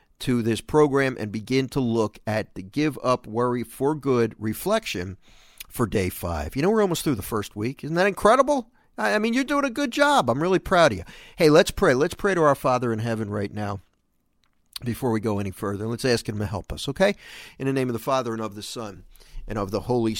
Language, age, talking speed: English, 50-69, 235 wpm